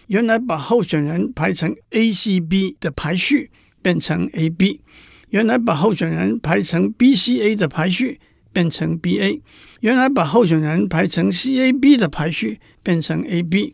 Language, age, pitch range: Chinese, 60-79, 165-225 Hz